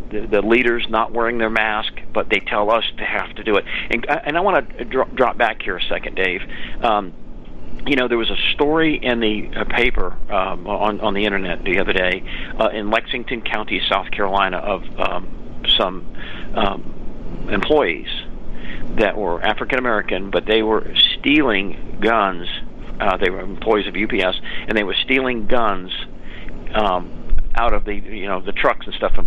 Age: 50-69